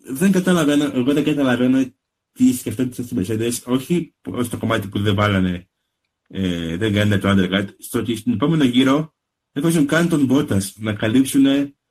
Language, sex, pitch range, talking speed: Greek, male, 105-140 Hz, 165 wpm